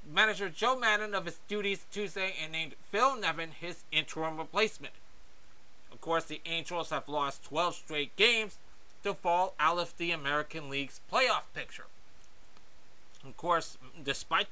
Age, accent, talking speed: 30-49, American, 145 wpm